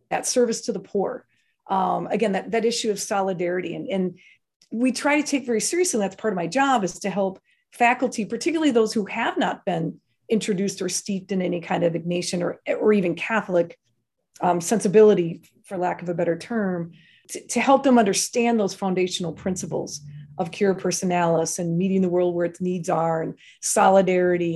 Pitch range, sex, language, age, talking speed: 180-225 Hz, female, English, 40-59, 190 wpm